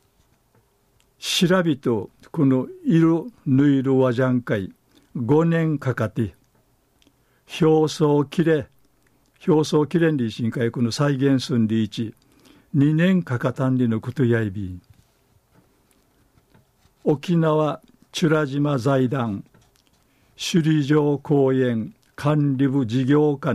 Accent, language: native, Japanese